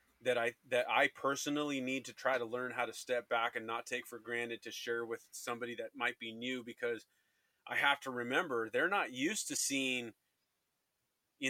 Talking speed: 200 wpm